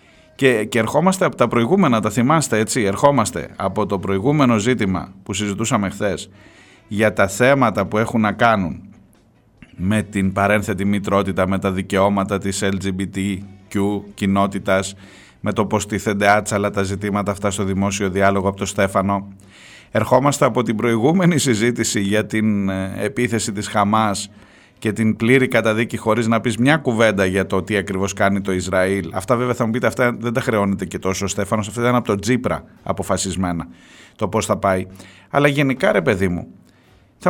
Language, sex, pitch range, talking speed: Greek, male, 100-130 Hz, 165 wpm